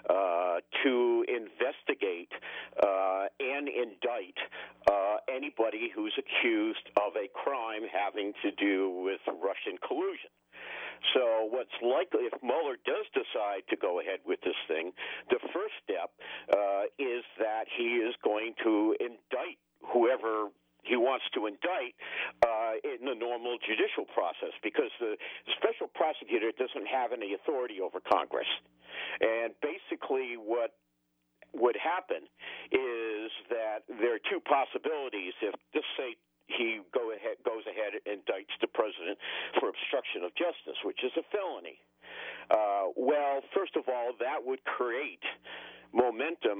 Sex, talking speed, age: male, 135 wpm, 50-69